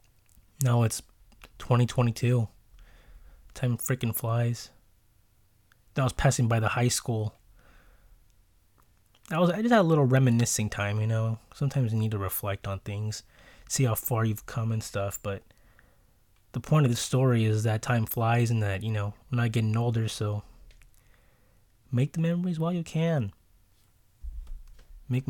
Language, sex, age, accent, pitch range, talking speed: English, male, 20-39, American, 105-125 Hz, 160 wpm